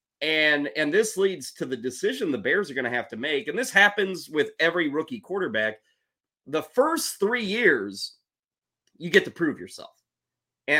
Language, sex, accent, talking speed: English, male, American, 180 wpm